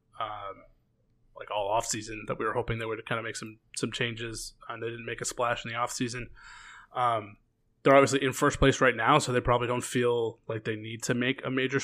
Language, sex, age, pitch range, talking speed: English, male, 20-39, 115-130 Hz, 235 wpm